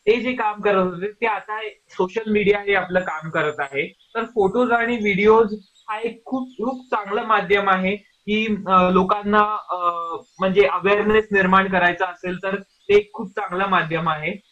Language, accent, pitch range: Marathi, native, 185-220 Hz